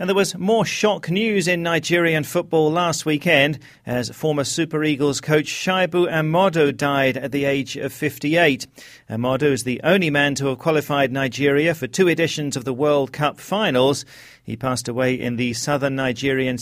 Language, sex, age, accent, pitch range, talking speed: English, male, 40-59, British, 130-170 Hz, 175 wpm